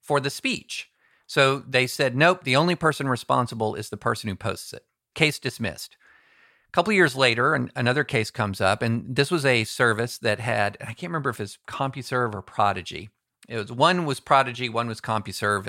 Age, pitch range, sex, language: 50-69, 110-150 Hz, male, English